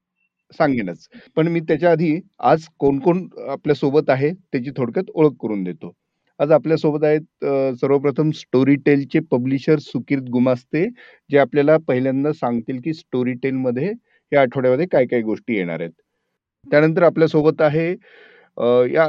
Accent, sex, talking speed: native, male, 130 wpm